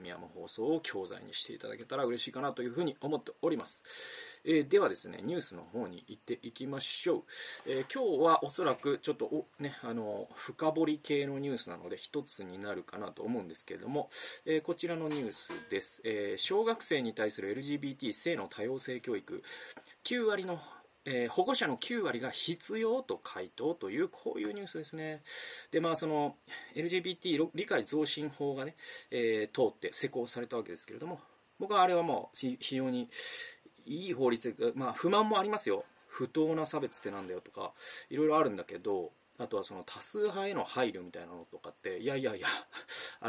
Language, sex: Japanese, male